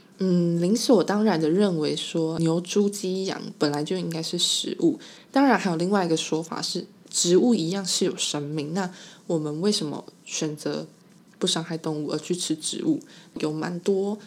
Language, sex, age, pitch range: Chinese, female, 20-39, 165-215 Hz